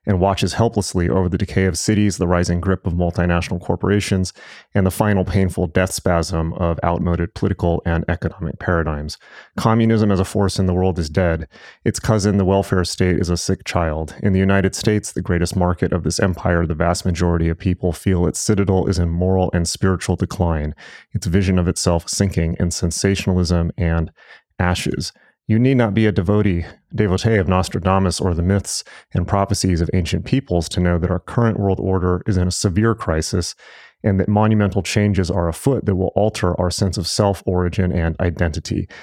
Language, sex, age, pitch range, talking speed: English, male, 30-49, 90-100 Hz, 185 wpm